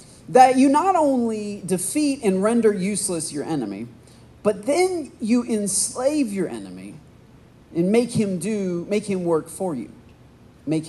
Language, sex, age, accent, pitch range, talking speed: English, male, 40-59, American, 140-220 Hz, 145 wpm